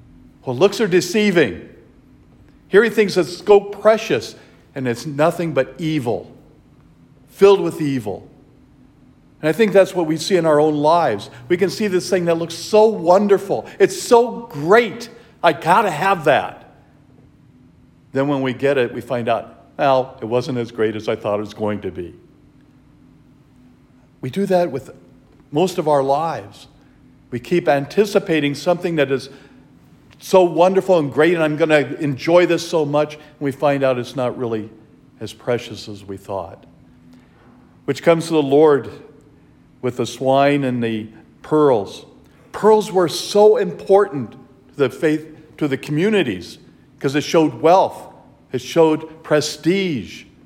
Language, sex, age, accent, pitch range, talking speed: English, male, 50-69, American, 130-175 Hz, 160 wpm